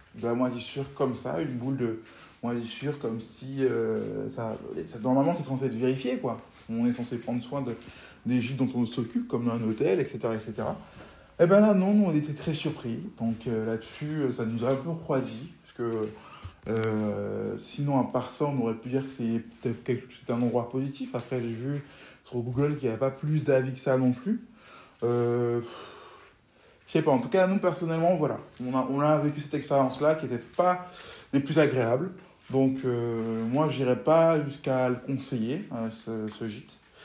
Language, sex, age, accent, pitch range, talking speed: French, male, 20-39, French, 115-140 Hz, 200 wpm